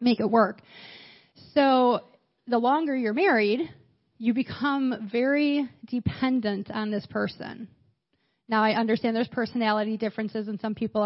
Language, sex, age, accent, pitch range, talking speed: English, female, 30-49, American, 215-250 Hz, 130 wpm